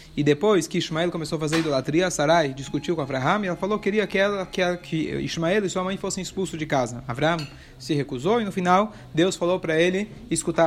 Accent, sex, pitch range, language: Brazilian, male, 160-200 Hz, Portuguese